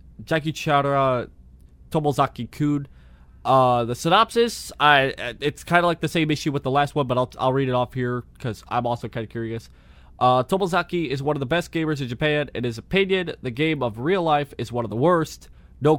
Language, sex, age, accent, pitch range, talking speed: English, male, 20-39, American, 110-150 Hz, 210 wpm